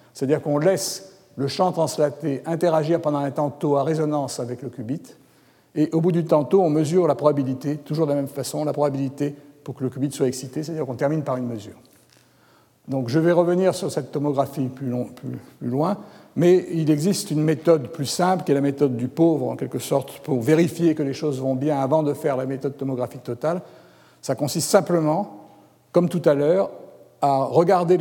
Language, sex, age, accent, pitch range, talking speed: French, male, 60-79, French, 135-170 Hz, 200 wpm